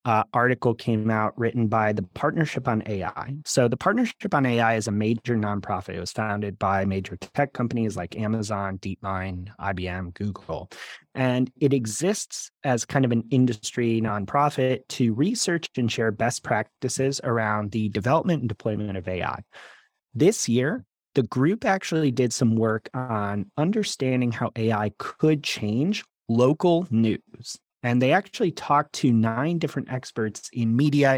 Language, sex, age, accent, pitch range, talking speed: English, male, 30-49, American, 110-135 Hz, 150 wpm